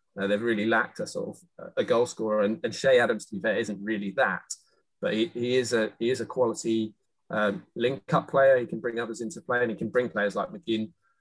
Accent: British